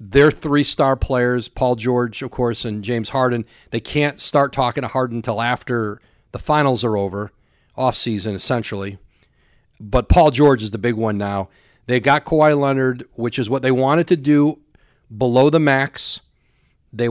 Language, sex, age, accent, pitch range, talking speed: English, male, 40-59, American, 115-140 Hz, 170 wpm